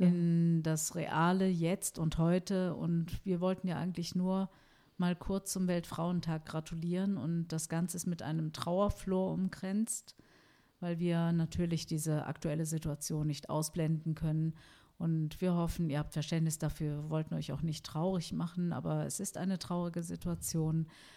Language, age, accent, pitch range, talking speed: German, 50-69, German, 160-185 Hz, 155 wpm